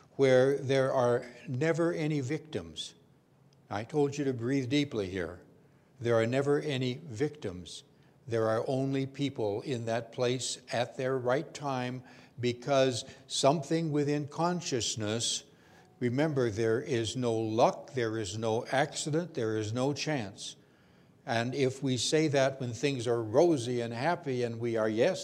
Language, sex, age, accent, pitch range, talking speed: English, male, 60-79, American, 115-145 Hz, 145 wpm